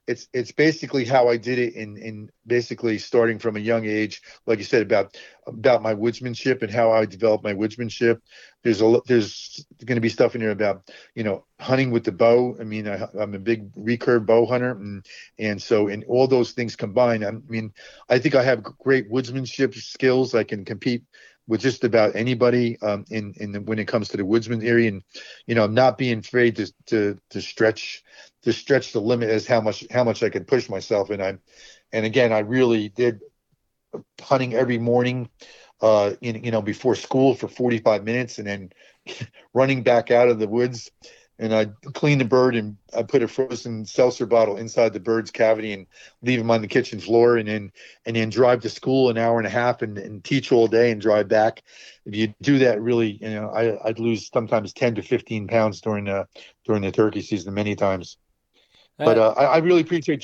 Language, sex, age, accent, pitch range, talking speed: English, male, 40-59, American, 110-125 Hz, 210 wpm